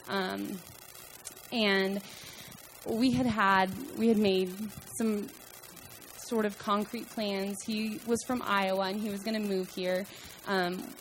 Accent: American